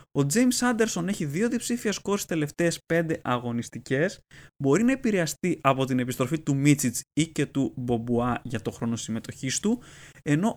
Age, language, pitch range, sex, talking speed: 20-39, Greek, 130-190 Hz, male, 160 wpm